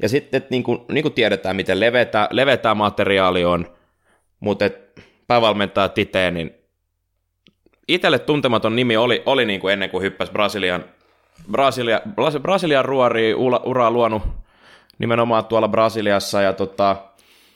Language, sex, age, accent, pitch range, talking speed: Finnish, male, 20-39, native, 95-120 Hz, 125 wpm